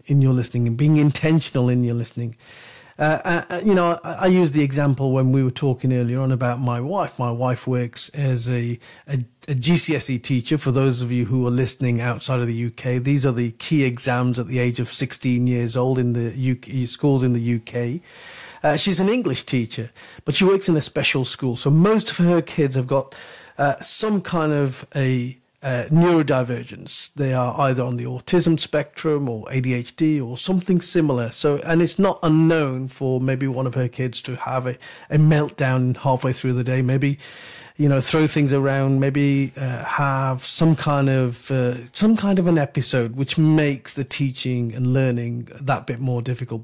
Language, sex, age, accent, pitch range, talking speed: English, male, 40-59, British, 125-150 Hz, 195 wpm